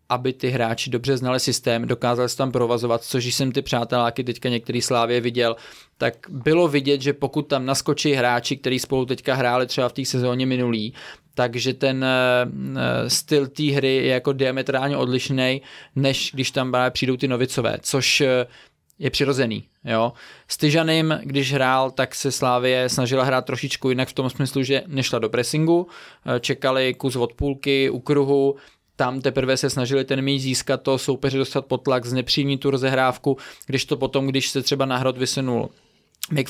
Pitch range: 125-140 Hz